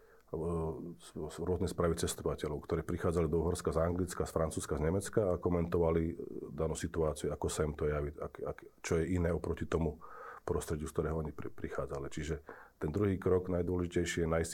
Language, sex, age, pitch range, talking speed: Slovak, male, 40-59, 80-90 Hz, 165 wpm